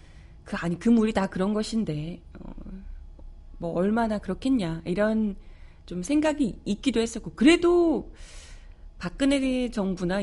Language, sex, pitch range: Korean, female, 155-235 Hz